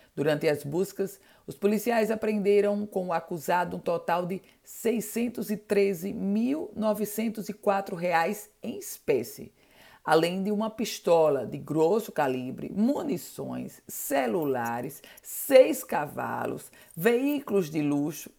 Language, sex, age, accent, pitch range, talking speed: Portuguese, female, 50-69, Brazilian, 155-210 Hz, 100 wpm